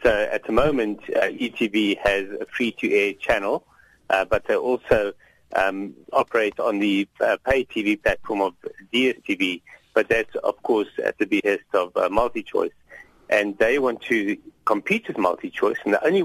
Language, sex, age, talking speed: English, male, 50-69, 160 wpm